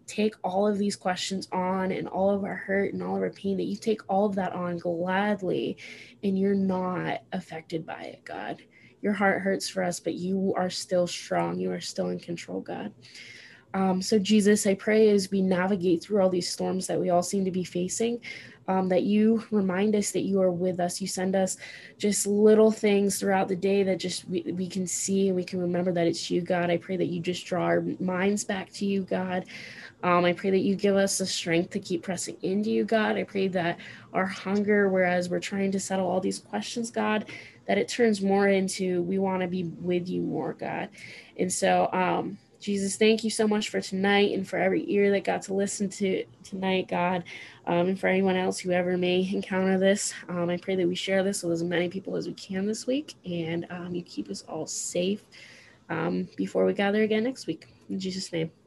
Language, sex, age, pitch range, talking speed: English, female, 20-39, 180-200 Hz, 220 wpm